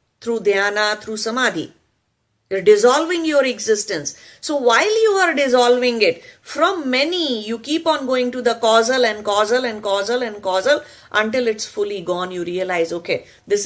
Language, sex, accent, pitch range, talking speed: English, female, Indian, 175-280 Hz, 165 wpm